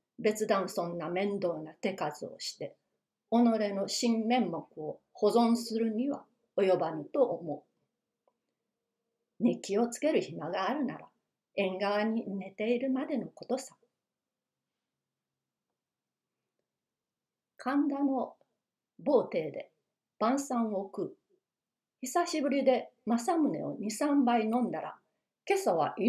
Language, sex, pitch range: Japanese, female, 210-260 Hz